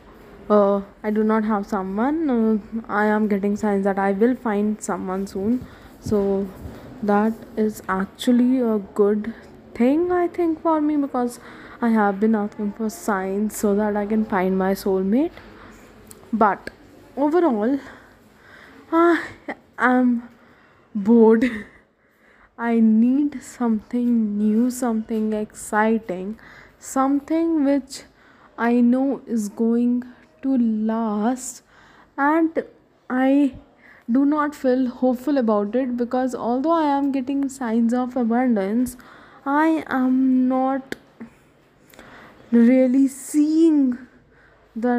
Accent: Indian